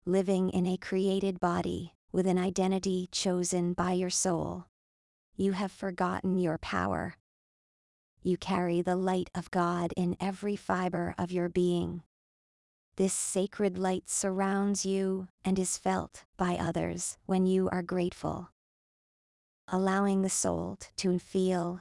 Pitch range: 175-185 Hz